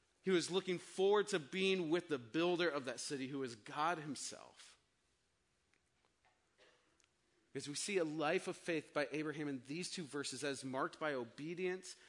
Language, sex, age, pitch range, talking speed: English, male, 30-49, 130-170 Hz, 165 wpm